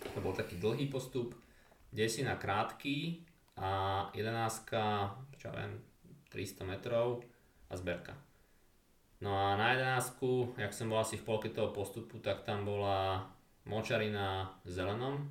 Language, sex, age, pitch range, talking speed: Slovak, male, 20-39, 95-115 Hz, 130 wpm